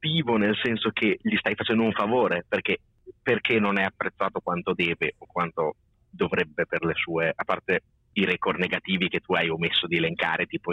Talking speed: 185 wpm